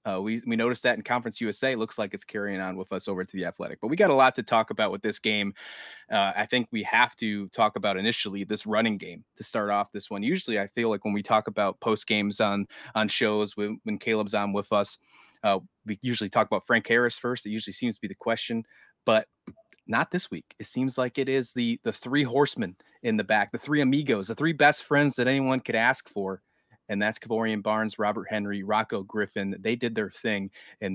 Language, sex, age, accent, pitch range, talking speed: English, male, 20-39, American, 105-130 Hz, 235 wpm